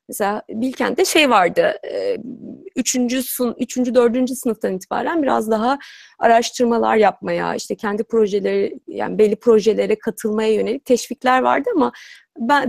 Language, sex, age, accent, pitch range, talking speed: Turkish, female, 30-49, native, 215-265 Hz, 120 wpm